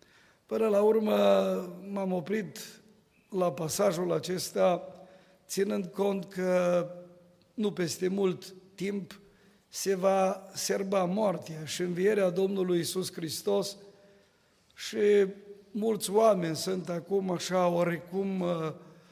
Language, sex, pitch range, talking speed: Romanian, male, 175-200 Hz, 95 wpm